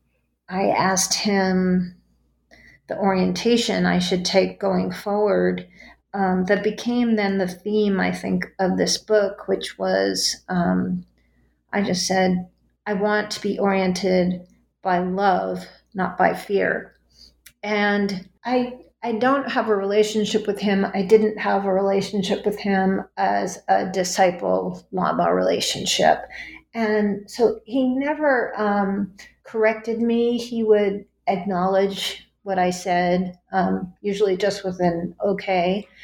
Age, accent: 40-59, American